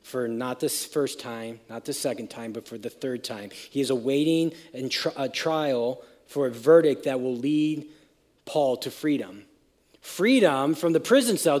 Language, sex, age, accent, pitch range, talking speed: English, male, 40-59, American, 130-170 Hz, 170 wpm